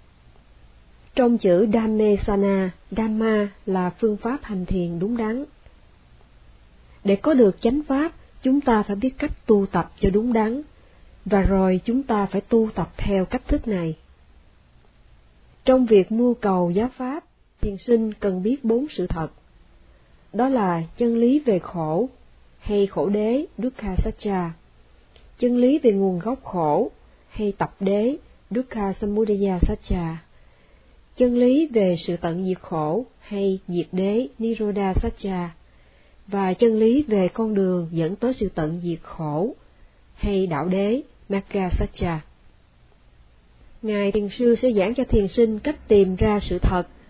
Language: Vietnamese